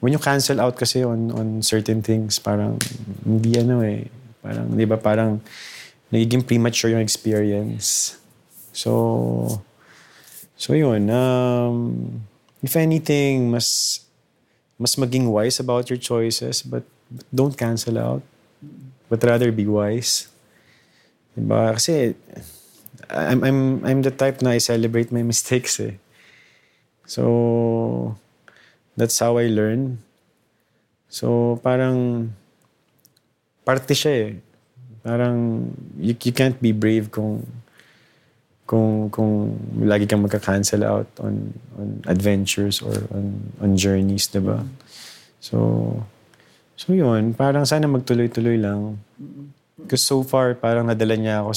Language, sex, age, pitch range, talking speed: English, male, 20-39, 105-125 Hz, 115 wpm